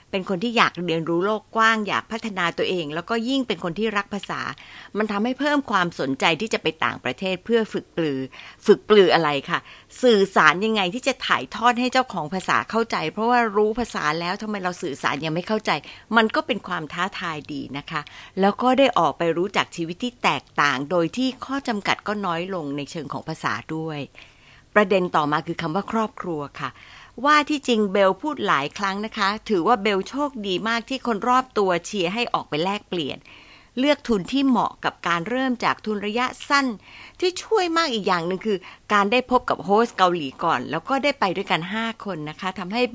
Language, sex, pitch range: Thai, female, 165-235 Hz